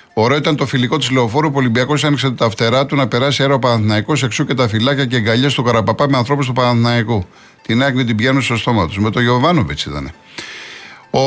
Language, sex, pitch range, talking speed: Greek, male, 120-145 Hz, 220 wpm